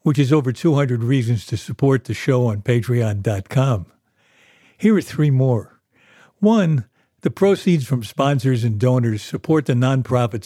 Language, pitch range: English, 115-145 Hz